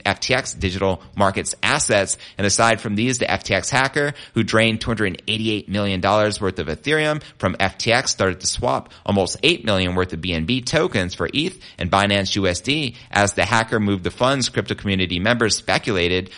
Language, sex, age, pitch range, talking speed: English, male, 30-49, 95-125 Hz, 165 wpm